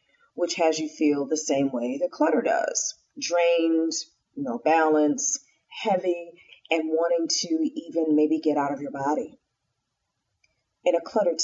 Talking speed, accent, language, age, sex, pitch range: 140 wpm, American, English, 40-59, female, 155-245 Hz